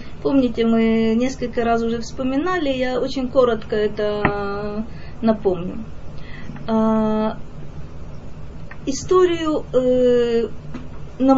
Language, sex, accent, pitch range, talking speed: Russian, female, native, 235-295 Hz, 70 wpm